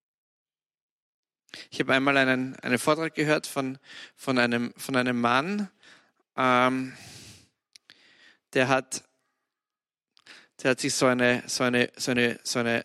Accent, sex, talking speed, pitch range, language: German, male, 85 wpm, 125-145 Hz, English